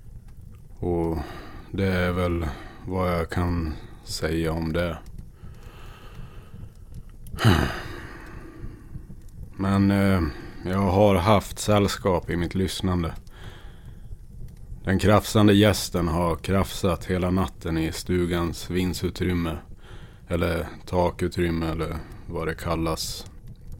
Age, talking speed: 30-49, 85 wpm